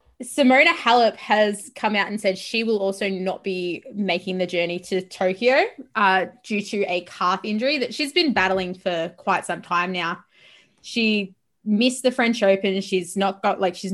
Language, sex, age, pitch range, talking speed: English, female, 20-39, 185-225 Hz, 180 wpm